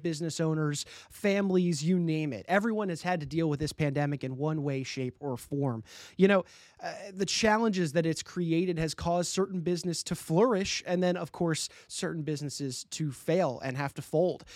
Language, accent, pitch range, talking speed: English, American, 155-195 Hz, 190 wpm